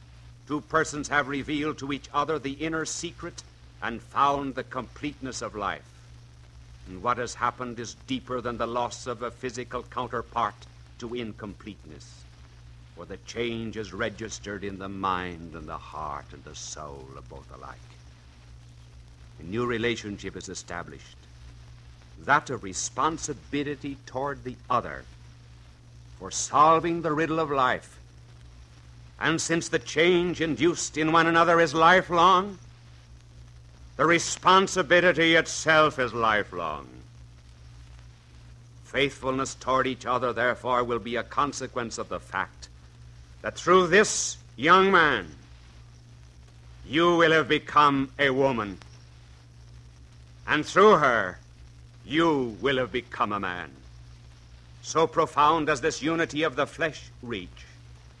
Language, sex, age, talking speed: English, male, 60-79, 125 wpm